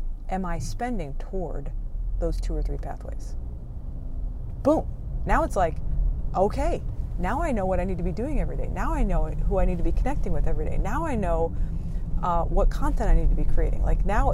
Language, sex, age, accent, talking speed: English, female, 30-49, American, 210 wpm